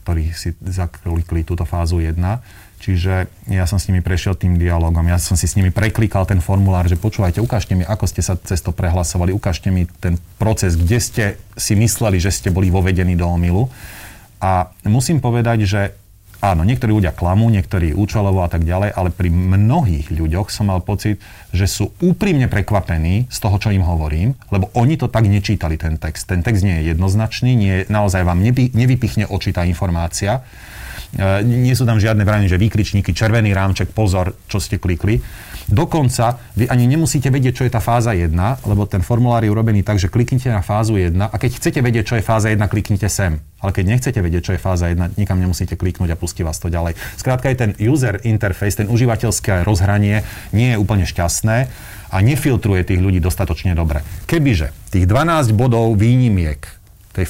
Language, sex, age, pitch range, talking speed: Slovak, male, 30-49, 90-110 Hz, 185 wpm